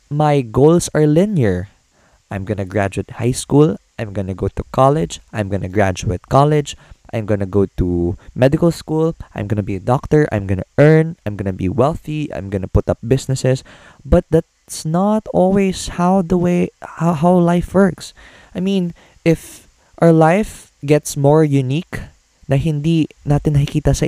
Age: 20-39